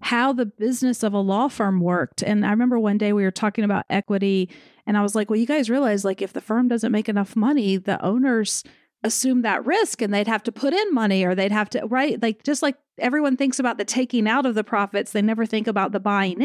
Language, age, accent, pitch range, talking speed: English, 30-49, American, 195-240 Hz, 250 wpm